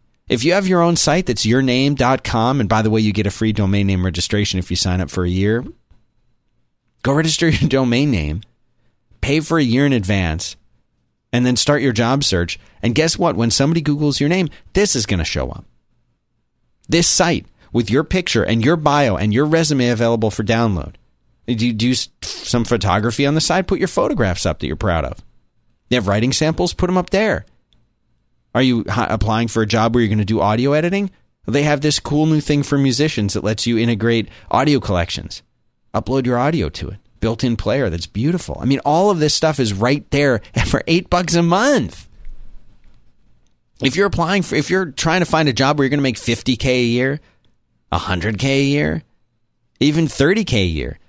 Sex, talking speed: male, 200 wpm